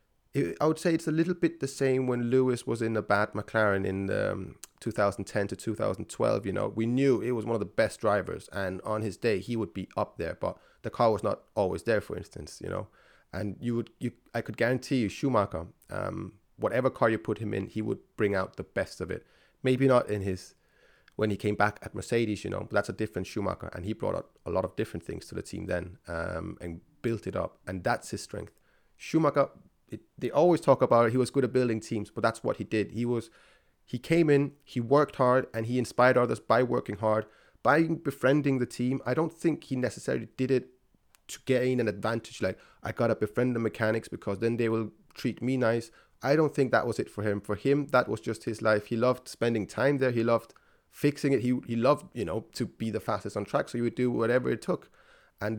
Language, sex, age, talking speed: English, male, 30-49, 235 wpm